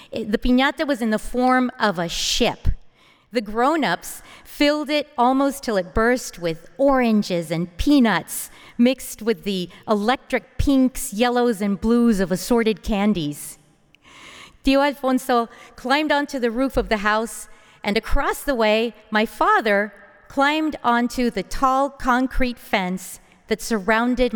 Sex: female